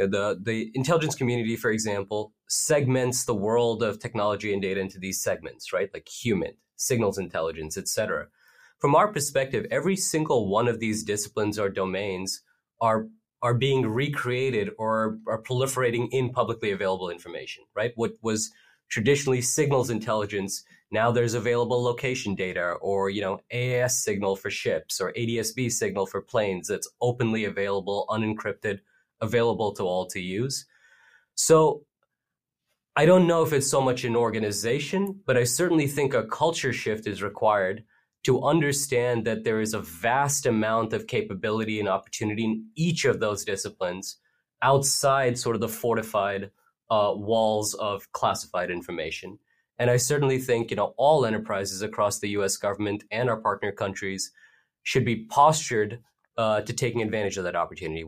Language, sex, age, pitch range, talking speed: English, male, 30-49, 105-125 Hz, 155 wpm